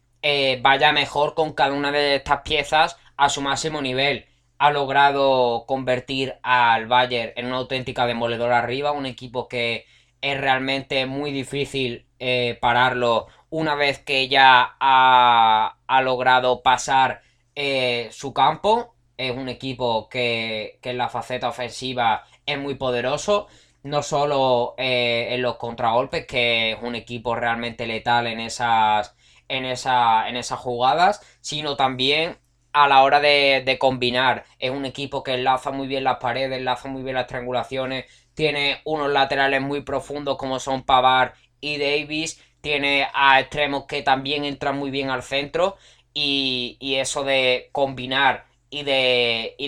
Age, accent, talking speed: 20-39, Spanish, 150 wpm